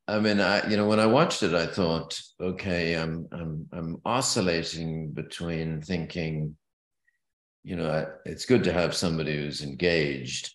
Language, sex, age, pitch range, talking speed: English, male, 50-69, 75-95 Hz, 160 wpm